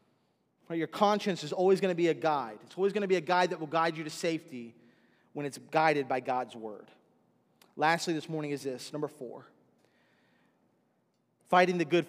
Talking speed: 190 wpm